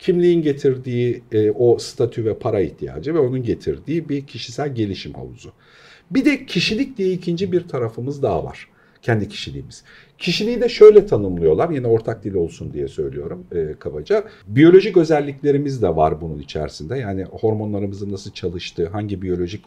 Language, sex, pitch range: Turkish, male, 105-160 Hz